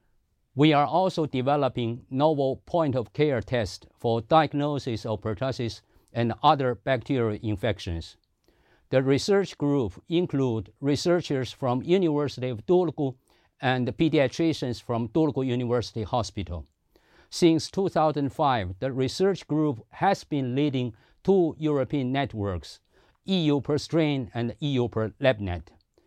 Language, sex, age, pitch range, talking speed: Finnish, male, 50-69, 110-150 Hz, 105 wpm